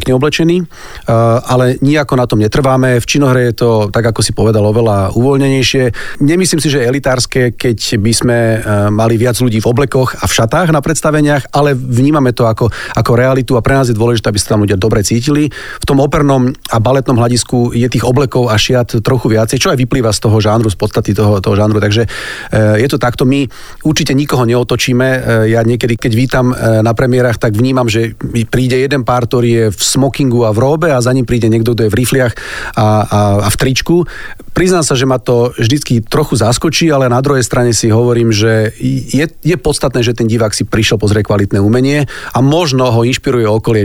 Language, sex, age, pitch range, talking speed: Slovak, male, 40-59, 115-135 Hz, 200 wpm